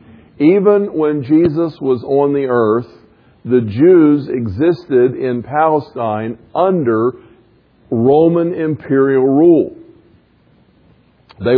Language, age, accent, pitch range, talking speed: English, 50-69, American, 125-170 Hz, 90 wpm